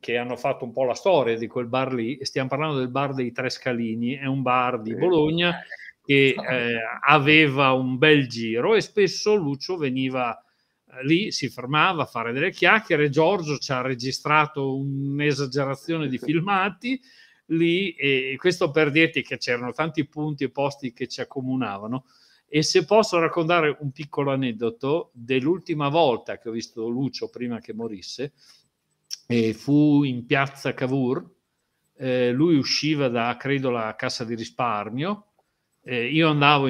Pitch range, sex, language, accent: 125-155 Hz, male, Italian, native